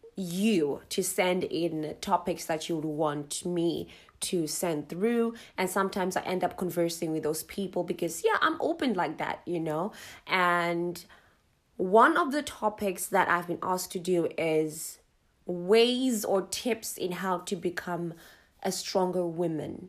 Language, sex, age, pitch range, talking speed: English, female, 20-39, 170-195 Hz, 155 wpm